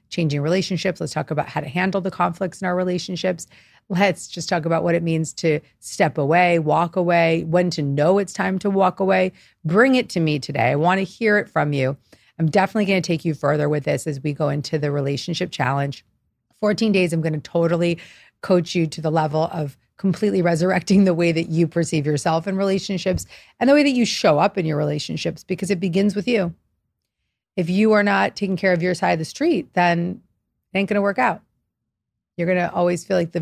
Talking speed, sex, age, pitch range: 225 wpm, female, 40-59, 150-190 Hz